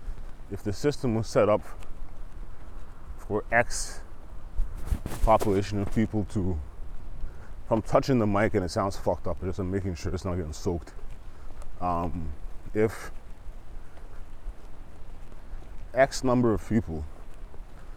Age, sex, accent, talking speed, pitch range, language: 20-39, male, American, 115 wpm, 85-110 Hz, English